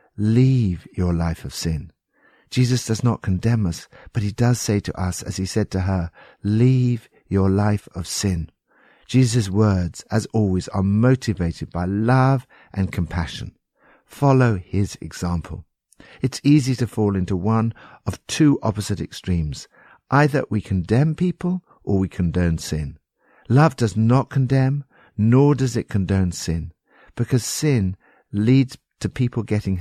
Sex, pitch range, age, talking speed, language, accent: male, 90-125 Hz, 60-79, 145 wpm, English, British